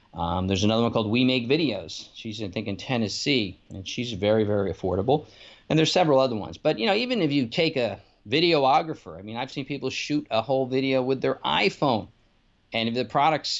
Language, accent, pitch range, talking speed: English, American, 110-145 Hz, 210 wpm